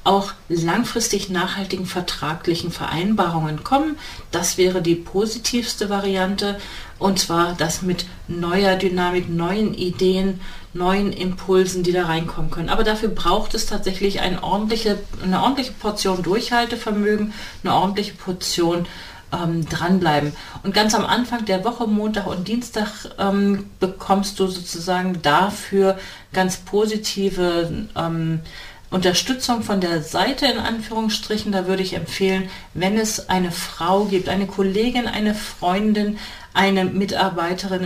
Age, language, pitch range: 40-59, German, 180-210 Hz